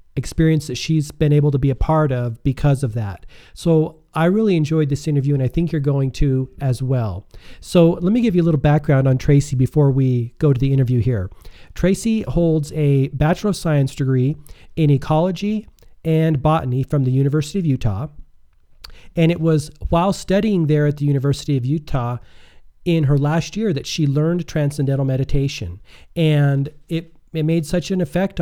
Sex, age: male, 40-59